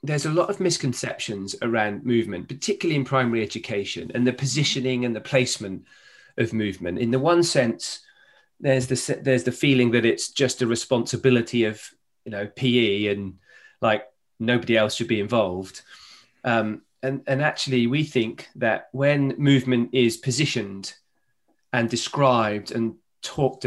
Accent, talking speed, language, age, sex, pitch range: British, 150 wpm, English, 30-49, male, 115-140 Hz